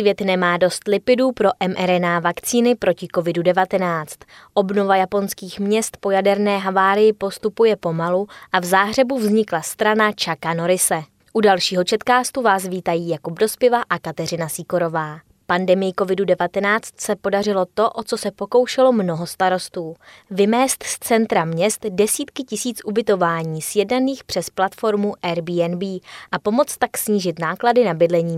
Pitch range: 175-215 Hz